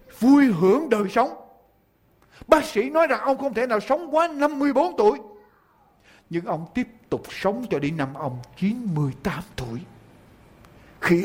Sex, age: male, 60-79